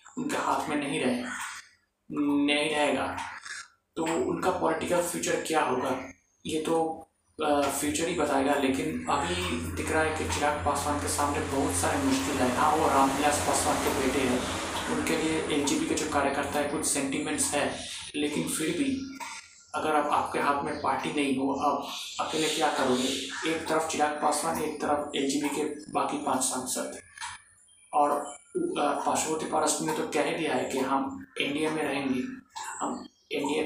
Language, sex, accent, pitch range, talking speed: Hindi, male, native, 135-160 Hz, 160 wpm